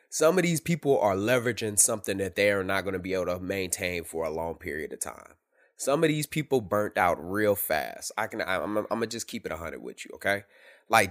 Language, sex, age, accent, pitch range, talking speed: English, male, 20-39, American, 90-120 Hz, 240 wpm